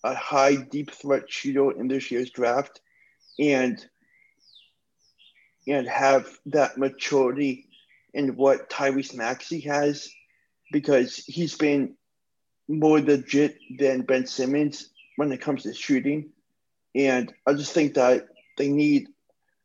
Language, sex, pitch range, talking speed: English, male, 135-150 Hz, 120 wpm